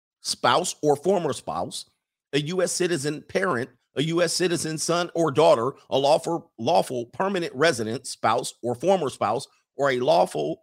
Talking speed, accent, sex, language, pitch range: 145 wpm, American, male, English, 115-165 Hz